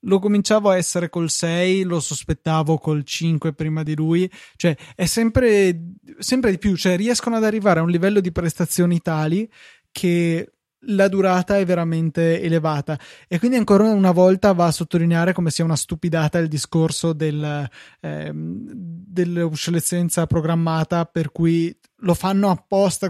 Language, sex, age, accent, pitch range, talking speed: Italian, male, 20-39, native, 155-180 Hz, 150 wpm